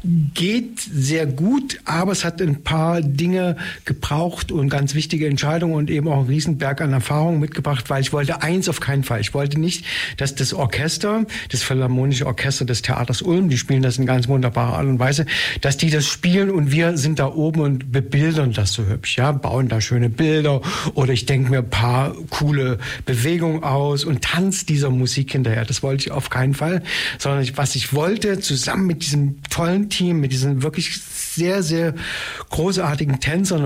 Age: 60-79